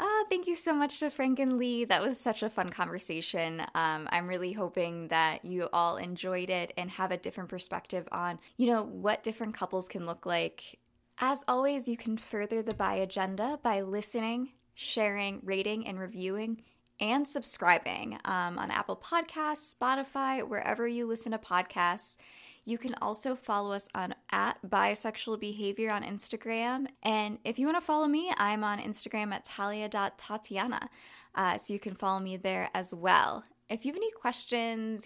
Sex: female